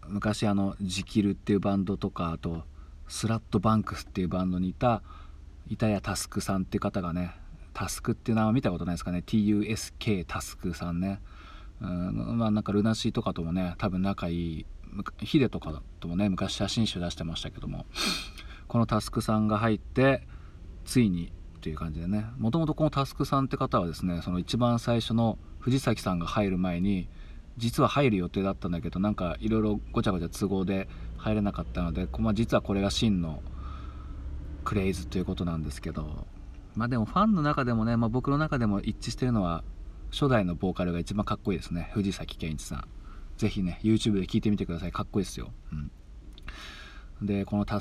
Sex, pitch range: male, 85-110 Hz